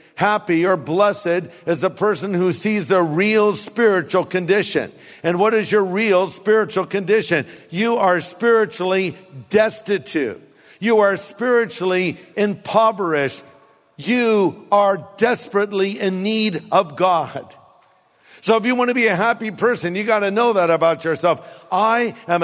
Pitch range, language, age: 165-215 Hz, English, 50-69